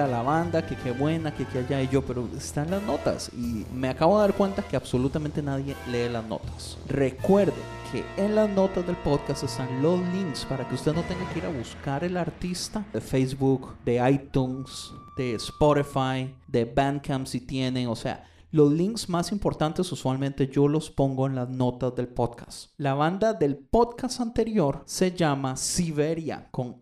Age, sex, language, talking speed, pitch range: 30-49, male, Spanish, 180 wpm, 130-175 Hz